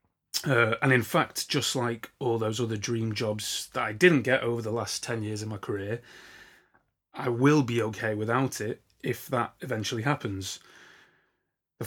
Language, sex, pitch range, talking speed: English, male, 110-125 Hz, 170 wpm